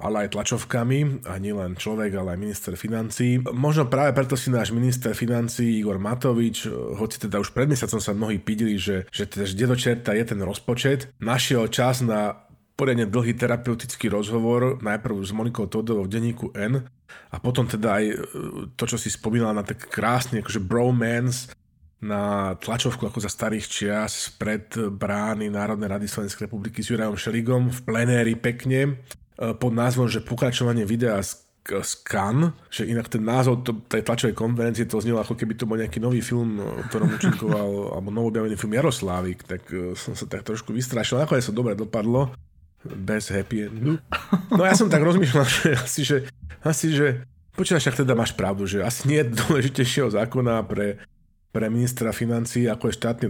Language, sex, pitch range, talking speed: Slovak, male, 105-125 Hz, 170 wpm